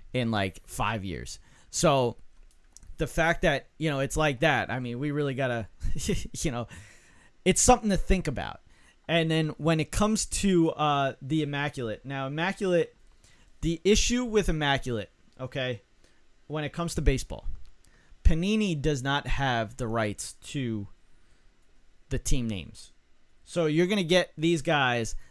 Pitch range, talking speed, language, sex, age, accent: 115-160 Hz, 150 wpm, English, male, 30-49, American